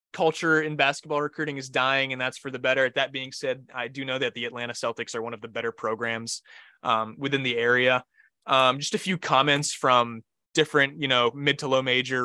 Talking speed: 220 wpm